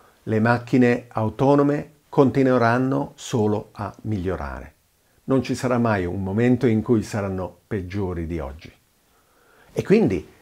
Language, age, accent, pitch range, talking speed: Italian, 50-69, native, 95-125 Hz, 120 wpm